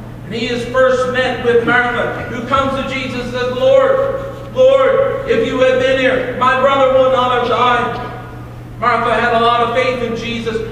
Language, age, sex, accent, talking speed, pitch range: English, 50-69, male, American, 190 wpm, 195-255 Hz